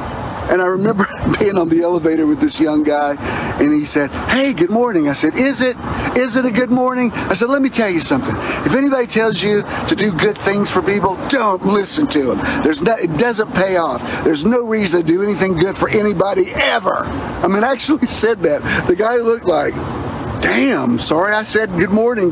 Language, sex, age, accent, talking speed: English, male, 50-69, American, 210 wpm